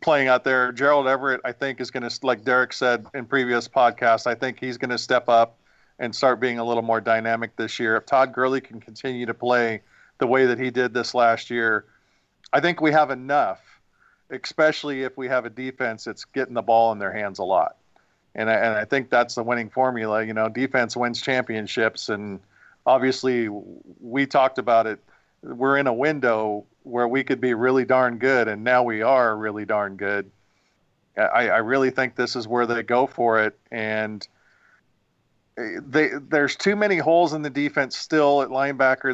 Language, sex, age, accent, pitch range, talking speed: English, male, 40-59, American, 115-130 Hz, 195 wpm